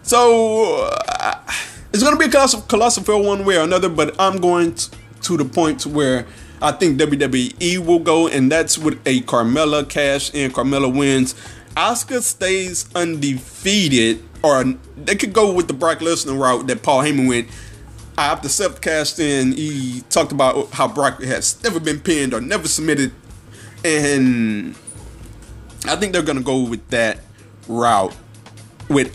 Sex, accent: male, American